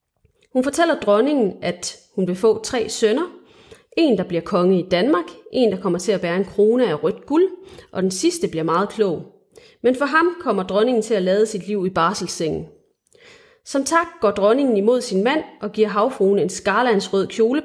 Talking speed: 195 wpm